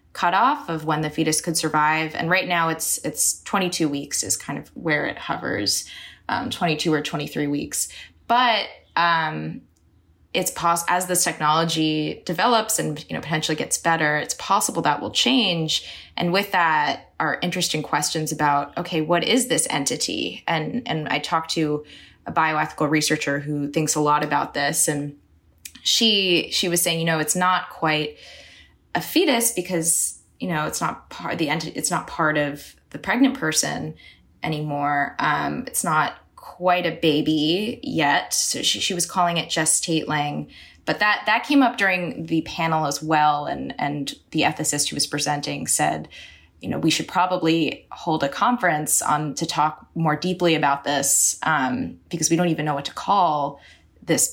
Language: English